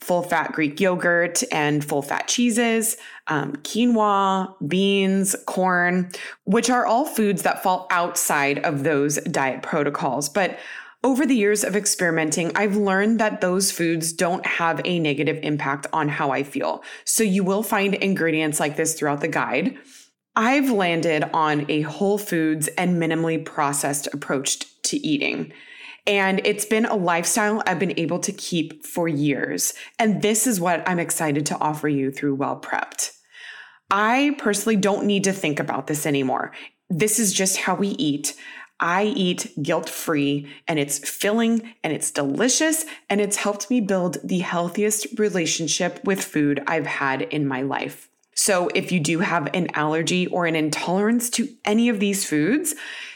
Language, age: English, 20-39